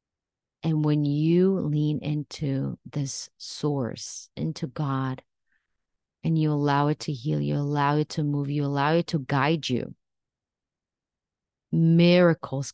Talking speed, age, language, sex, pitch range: 125 wpm, 30-49, English, female, 140-165 Hz